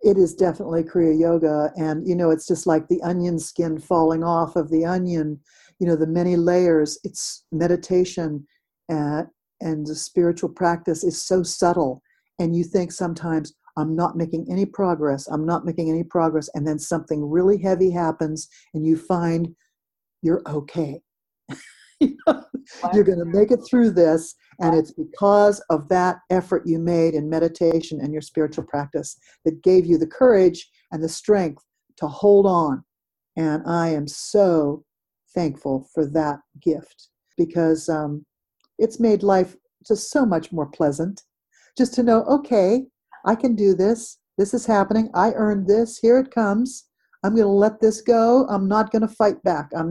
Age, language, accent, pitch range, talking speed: 50-69, English, American, 160-200 Hz, 165 wpm